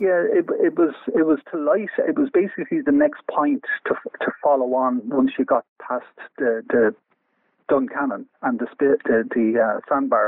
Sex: male